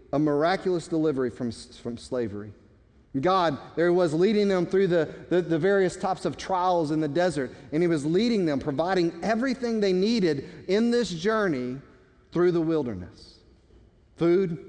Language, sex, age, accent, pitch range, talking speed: English, male, 40-59, American, 140-215 Hz, 155 wpm